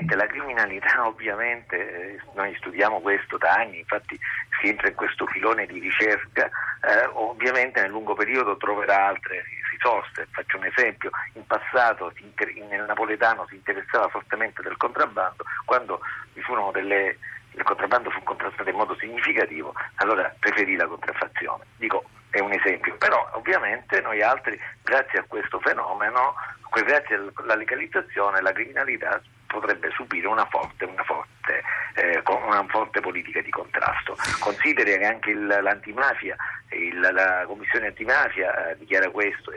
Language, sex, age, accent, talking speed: Italian, male, 50-69, native, 140 wpm